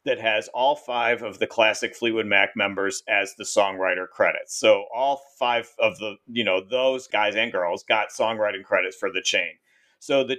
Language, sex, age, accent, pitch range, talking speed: English, male, 40-59, American, 105-140 Hz, 190 wpm